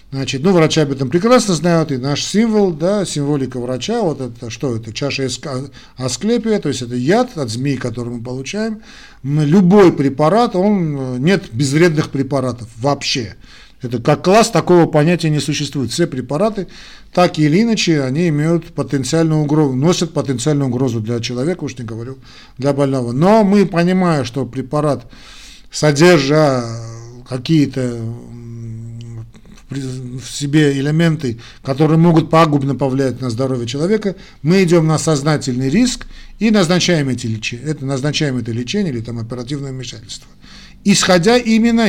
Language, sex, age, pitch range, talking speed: Russian, male, 50-69, 130-175 Hz, 140 wpm